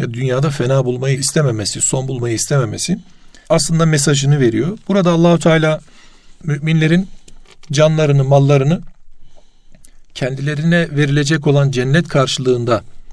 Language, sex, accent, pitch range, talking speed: Turkish, male, native, 130-160 Hz, 95 wpm